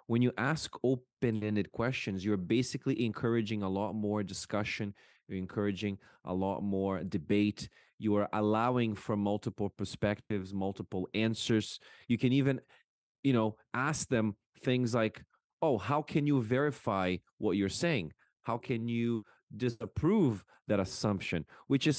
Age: 30-49